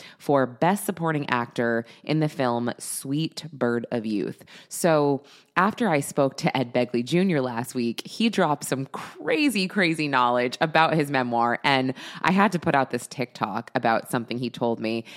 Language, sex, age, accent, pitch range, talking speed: English, female, 20-39, American, 125-180 Hz, 170 wpm